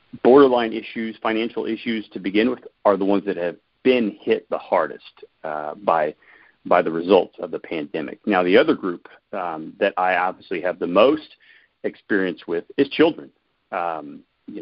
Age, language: 40-59, English